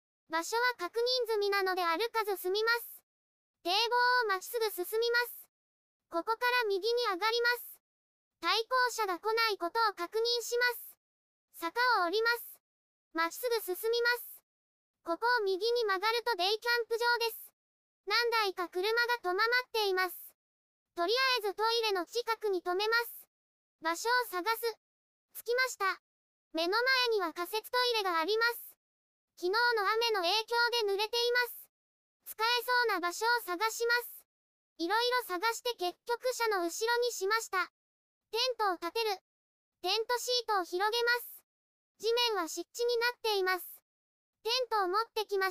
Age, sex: 20-39, male